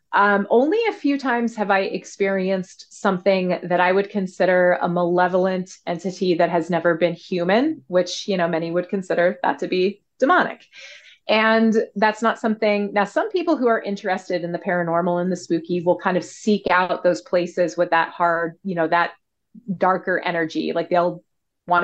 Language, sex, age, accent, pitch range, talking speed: English, female, 30-49, American, 175-225 Hz, 180 wpm